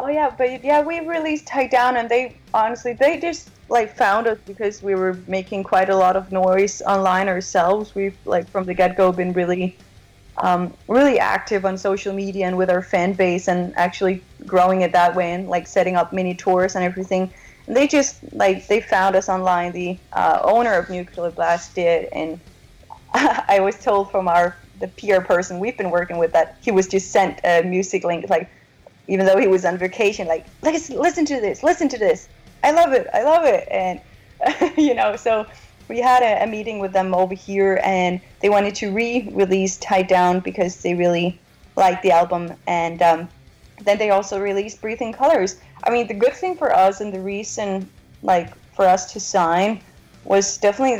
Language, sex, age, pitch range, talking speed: English, female, 30-49, 180-220 Hz, 195 wpm